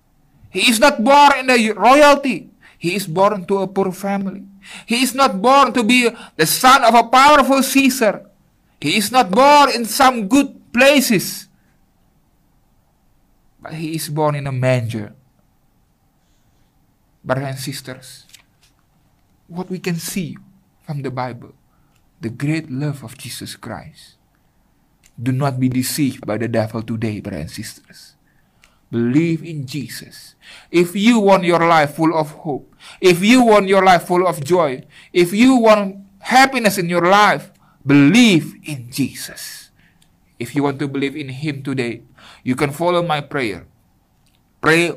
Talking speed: 150 wpm